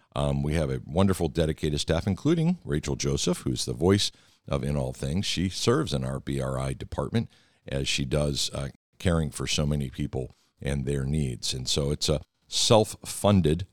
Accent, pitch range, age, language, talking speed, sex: American, 70-90 Hz, 50-69, English, 175 wpm, male